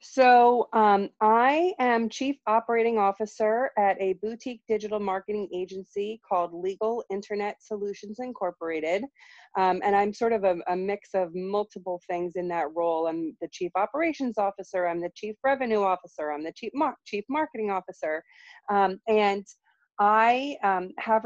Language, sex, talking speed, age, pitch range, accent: English, female, 150 wpm, 30-49, 180-220 Hz, American